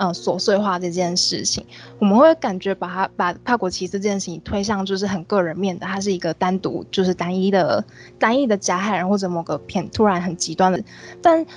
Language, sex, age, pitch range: Chinese, female, 20-39, 180-205 Hz